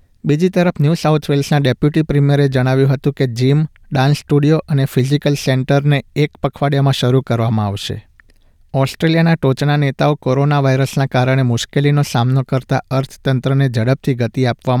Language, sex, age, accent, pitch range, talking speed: Gujarati, male, 50-69, native, 120-145 Hz, 135 wpm